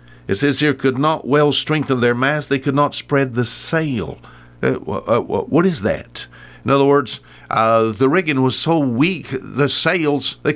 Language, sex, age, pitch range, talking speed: English, male, 60-79, 90-135 Hz, 175 wpm